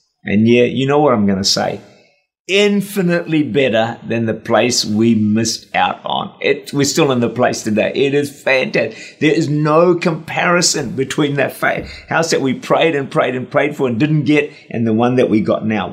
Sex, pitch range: male, 115-150 Hz